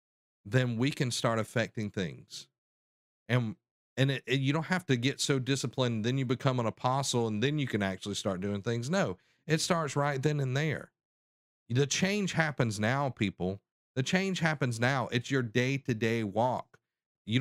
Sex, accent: male, American